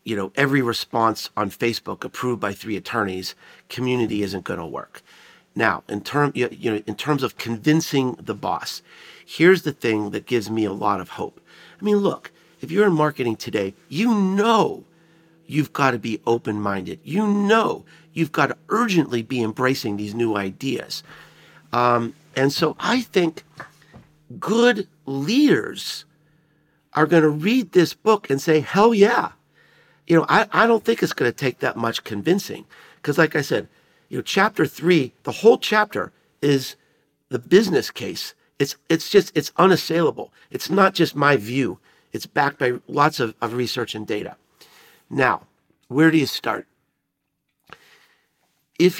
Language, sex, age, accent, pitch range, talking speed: English, male, 50-69, American, 120-180 Hz, 160 wpm